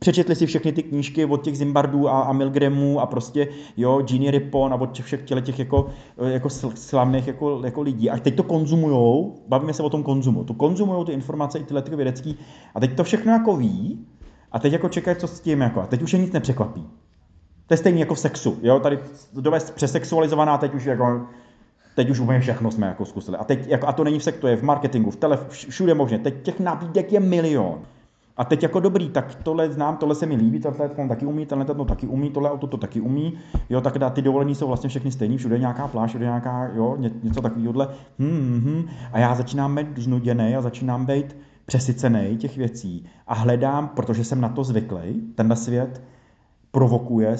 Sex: male